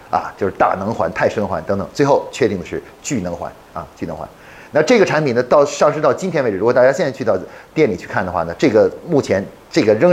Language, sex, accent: Chinese, male, native